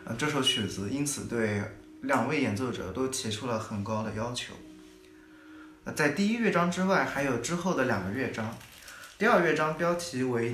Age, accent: 20-39, native